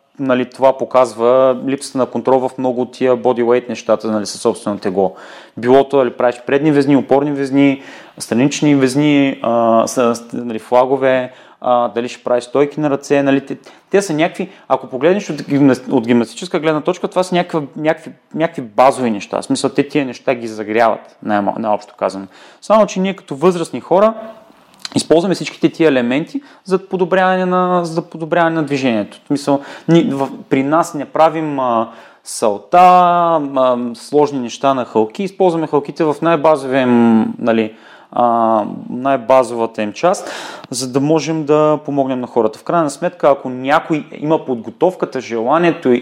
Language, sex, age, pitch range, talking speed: Bulgarian, male, 30-49, 125-155 Hz, 150 wpm